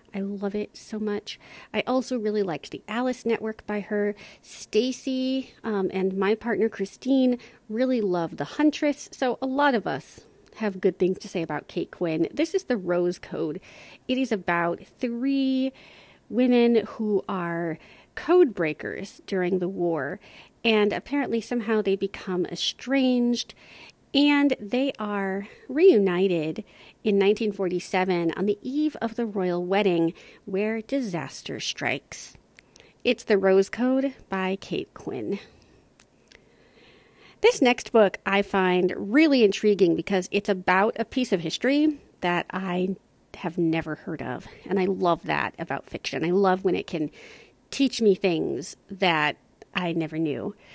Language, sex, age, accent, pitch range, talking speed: English, female, 40-59, American, 185-250 Hz, 145 wpm